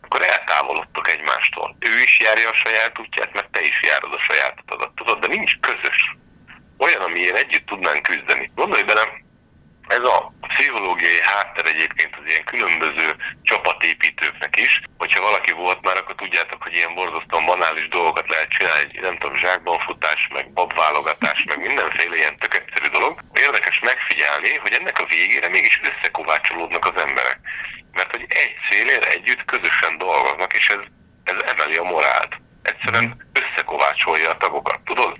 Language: Hungarian